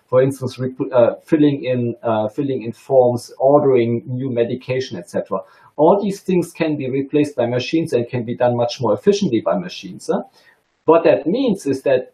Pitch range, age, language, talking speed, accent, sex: 120-160 Hz, 40-59, English, 185 wpm, German, male